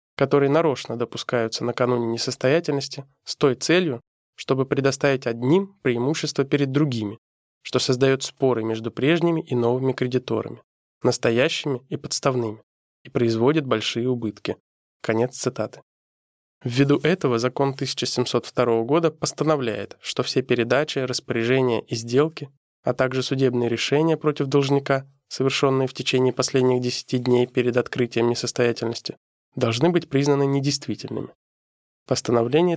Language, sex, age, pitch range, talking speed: Russian, male, 20-39, 120-145 Hz, 115 wpm